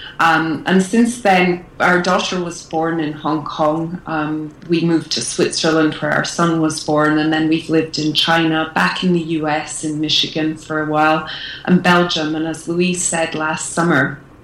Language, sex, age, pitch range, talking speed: English, female, 30-49, 155-170 Hz, 185 wpm